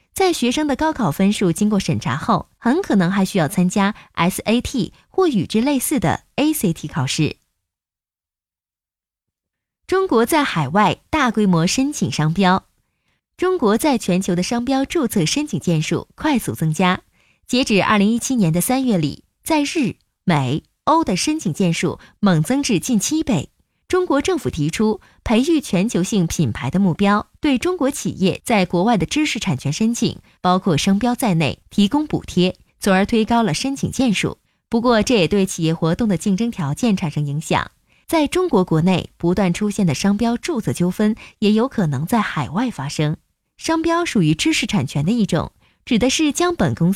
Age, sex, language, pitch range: 20-39, female, Chinese, 170-250 Hz